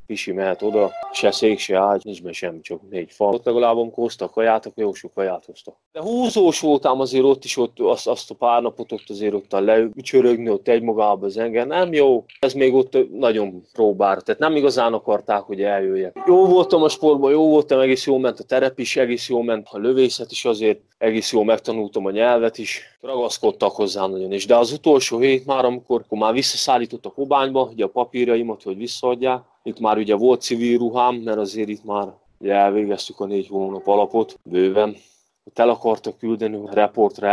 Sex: male